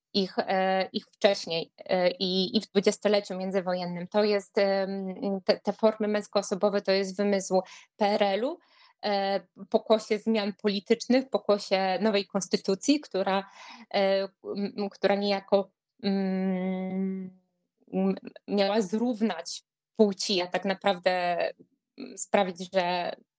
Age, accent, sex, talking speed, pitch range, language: 20-39, native, female, 90 wpm, 185-215 Hz, Polish